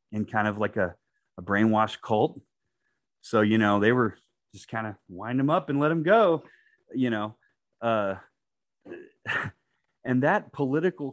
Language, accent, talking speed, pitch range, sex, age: English, American, 155 wpm, 110-140 Hz, male, 30-49